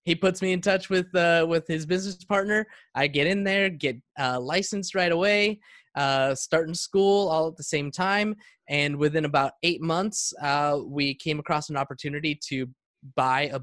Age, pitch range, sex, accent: 20-39, 130-165 Hz, male, American